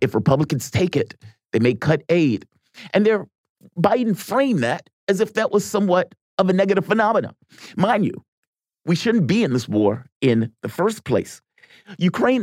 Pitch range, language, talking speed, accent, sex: 120-175 Hz, English, 170 wpm, American, male